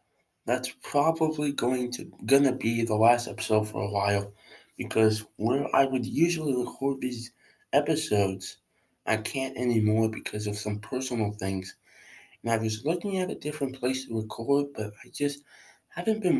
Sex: male